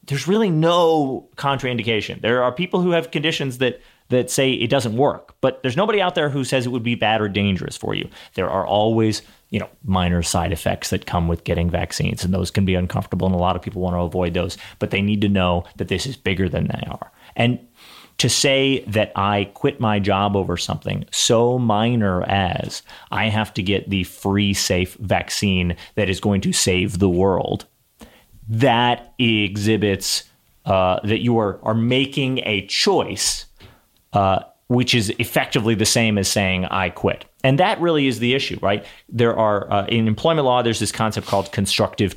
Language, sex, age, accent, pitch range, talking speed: English, male, 30-49, American, 95-125 Hz, 195 wpm